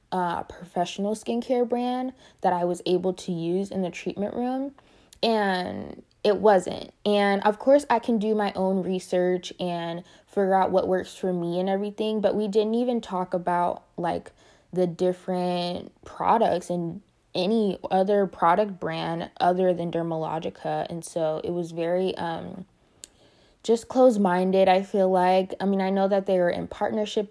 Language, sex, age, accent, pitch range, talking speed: English, female, 20-39, American, 175-205 Hz, 160 wpm